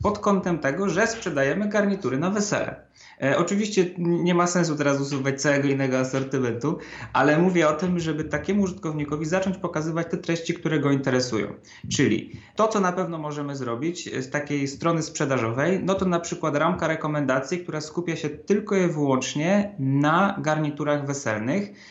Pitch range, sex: 135-170 Hz, male